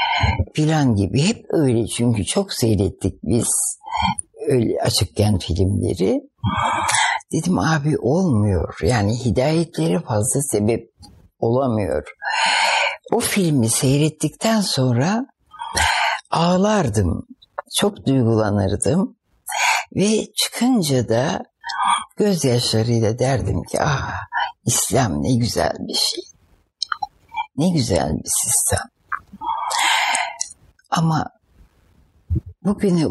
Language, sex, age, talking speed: Turkish, female, 60-79, 80 wpm